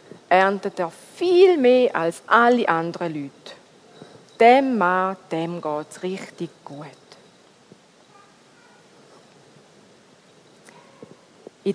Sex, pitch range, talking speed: female, 180-255 Hz, 75 wpm